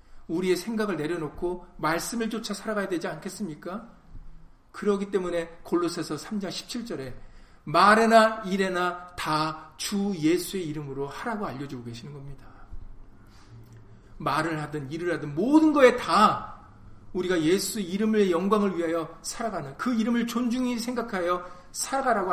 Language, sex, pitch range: Korean, male, 150-215 Hz